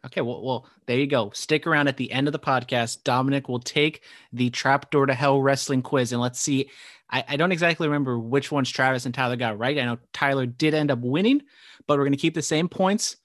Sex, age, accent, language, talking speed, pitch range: male, 30-49, American, English, 240 wpm, 130-160 Hz